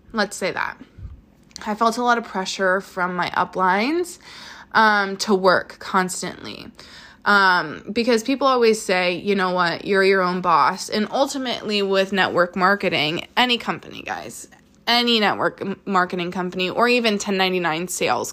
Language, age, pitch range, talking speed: English, 20-39, 180-215 Hz, 145 wpm